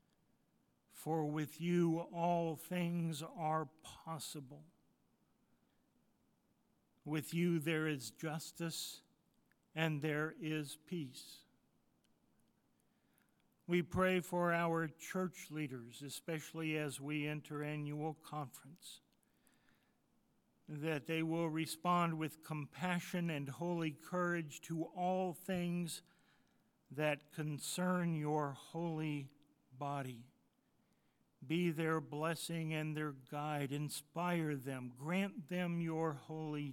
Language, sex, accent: English, male, American